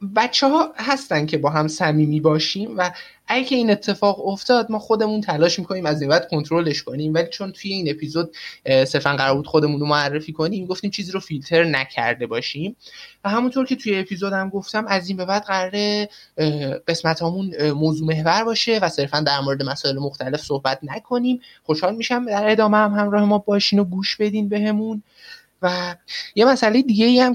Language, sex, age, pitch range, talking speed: Persian, male, 20-39, 145-200 Hz, 170 wpm